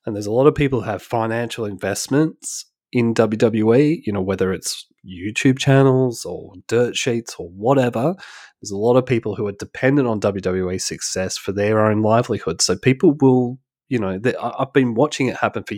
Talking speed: 185 wpm